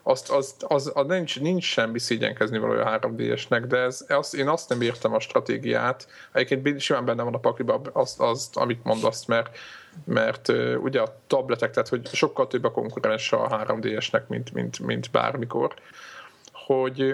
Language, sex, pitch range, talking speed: Hungarian, male, 120-140 Hz, 180 wpm